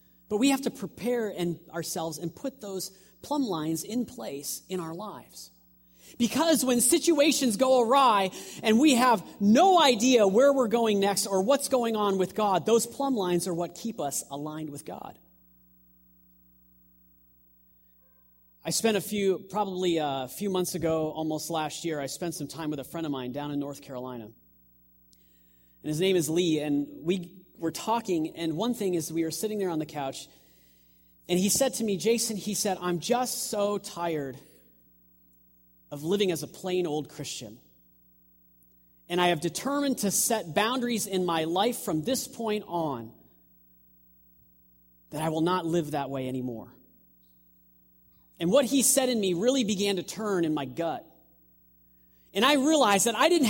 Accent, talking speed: American, 170 wpm